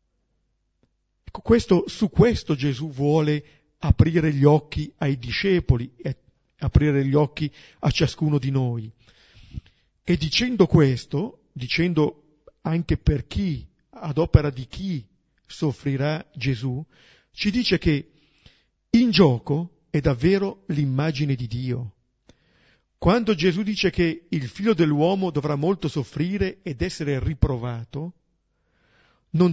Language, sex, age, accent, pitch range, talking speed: Italian, male, 50-69, native, 130-185 Hz, 110 wpm